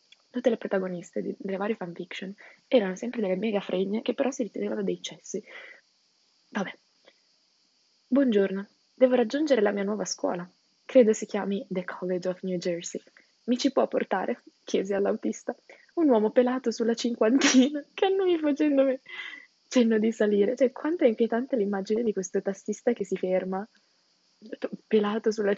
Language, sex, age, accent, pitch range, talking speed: Italian, female, 20-39, native, 185-235 Hz, 150 wpm